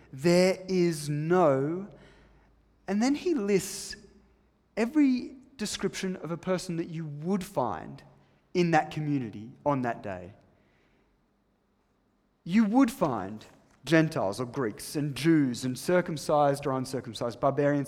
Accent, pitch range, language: Australian, 140-210 Hz, English